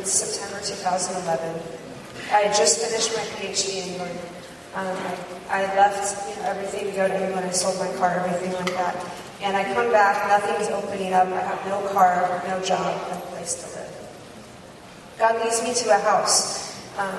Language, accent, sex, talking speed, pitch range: English, American, female, 185 wpm, 190-220 Hz